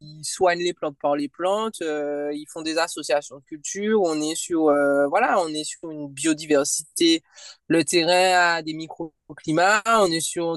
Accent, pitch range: French, 155-230 Hz